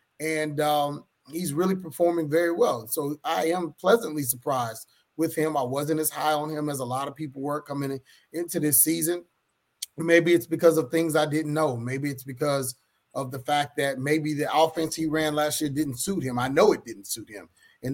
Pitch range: 135-160 Hz